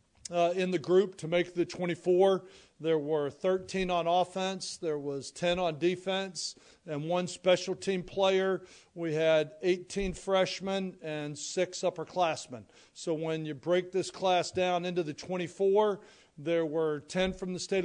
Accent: American